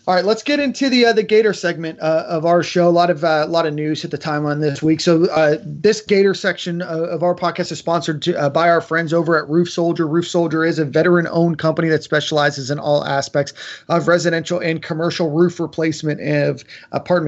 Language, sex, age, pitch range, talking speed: English, male, 30-49, 150-175 Hz, 235 wpm